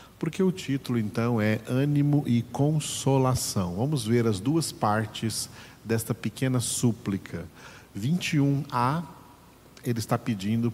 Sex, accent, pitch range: male, Brazilian, 105-130 Hz